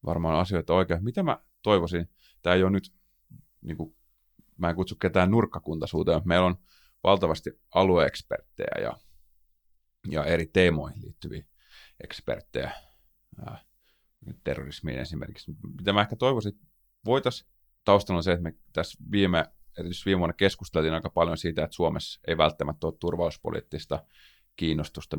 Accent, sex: native, male